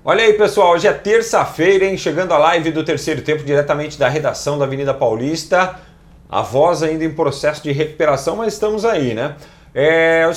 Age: 40-59